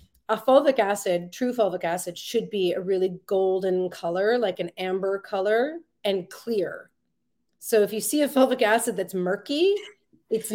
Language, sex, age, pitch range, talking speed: English, female, 30-49, 185-220 Hz, 160 wpm